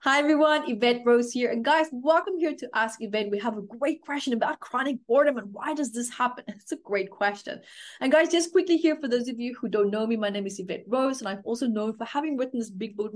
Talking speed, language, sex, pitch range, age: 260 wpm, English, female, 210-275 Hz, 30-49